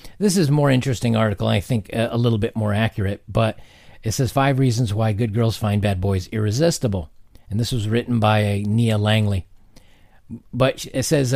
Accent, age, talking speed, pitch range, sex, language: American, 40-59, 185 wpm, 105-125 Hz, male, English